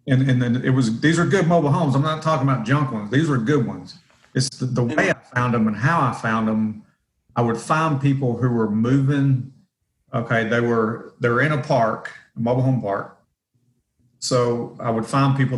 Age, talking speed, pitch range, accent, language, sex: 40-59, 210 wpm, 115-130 Hz, American, English, male